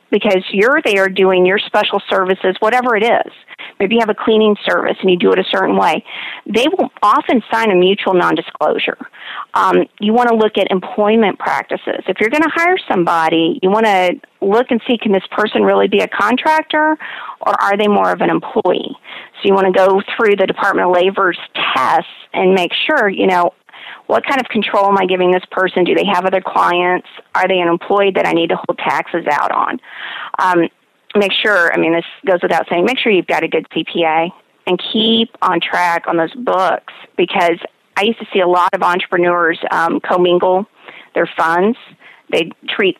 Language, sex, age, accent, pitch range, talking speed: English, female, 40-59, American, 180-220 Hz, 200 wpm